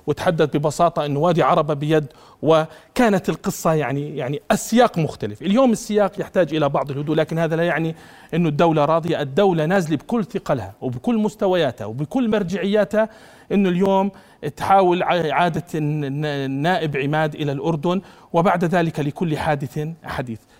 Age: 40-59